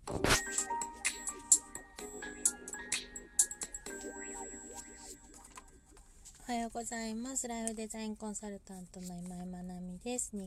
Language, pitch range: Japanese, 185-220 Hz